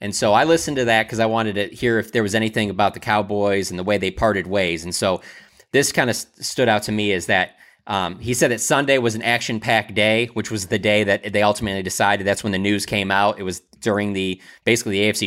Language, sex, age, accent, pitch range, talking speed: English, male, 30-49, American, 105-120 Hz, 260 wpm